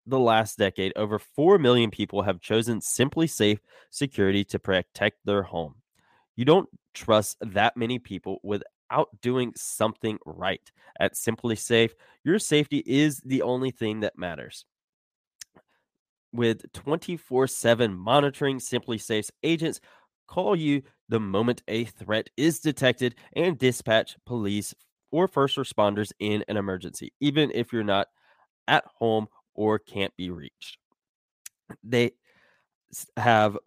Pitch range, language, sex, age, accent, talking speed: 100-130 Hz, English, male, 20-39, American, 130 wpm